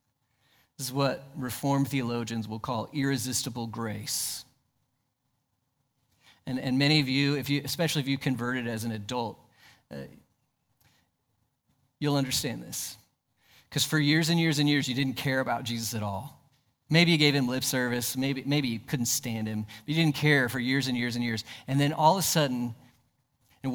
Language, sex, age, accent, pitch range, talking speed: English, male, 40-59, American, 125-165 Hz, 175 wpm